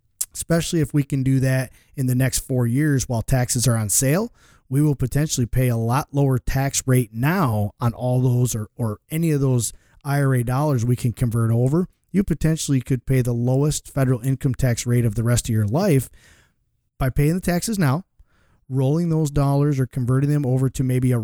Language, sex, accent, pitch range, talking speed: English, male, American, 120-145 Hz, 200 wpm